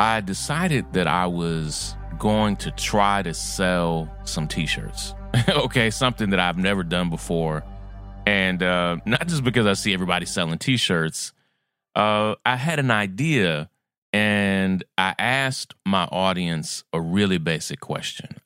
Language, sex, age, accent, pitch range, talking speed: English, male, 30-49, American, 85-105 Hz, 135 wpm